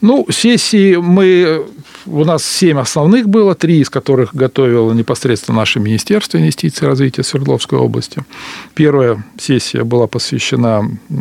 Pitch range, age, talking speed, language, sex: 115-145 Hz, 40-59, 130 wpm, Russian, male